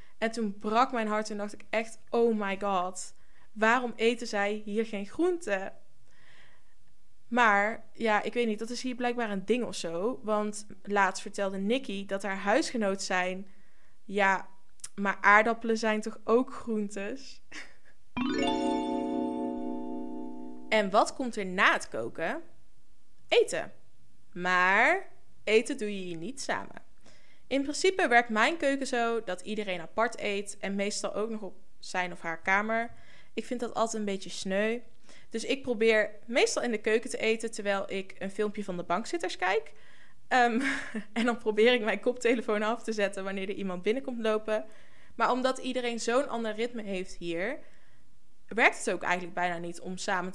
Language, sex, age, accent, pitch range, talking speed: Dutch, female, 20-39, Dutch, 195-235 Hz, 160 wpm